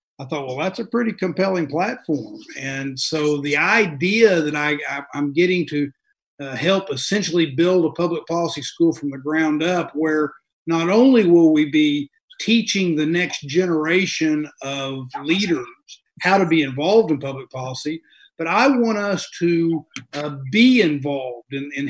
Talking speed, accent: 160 wpm, American